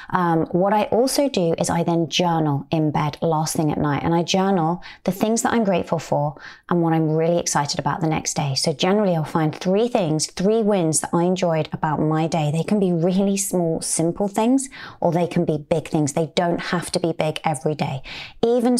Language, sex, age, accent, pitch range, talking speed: English, female, 20-39, British, 160-190 Hz, 220 wpm